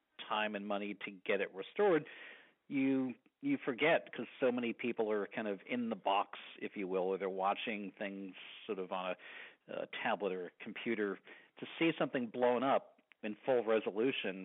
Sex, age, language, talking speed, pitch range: male, 50-69, English, 185 wpm, 105-135 Hz